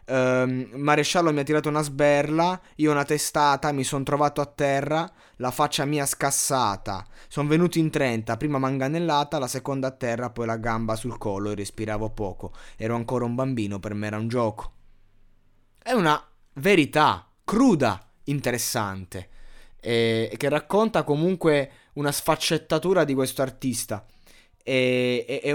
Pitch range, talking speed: 115-150 Hz, 145 wpm